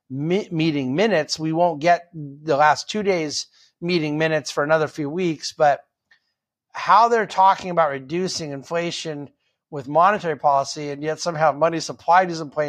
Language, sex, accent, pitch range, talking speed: English, male, American, 145-170 Hz, 150 wpm